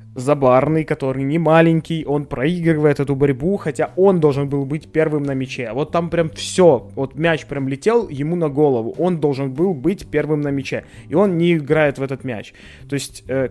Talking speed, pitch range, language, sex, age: 195 wpm, 130-165 Hz, Ukrainian, male, 20-39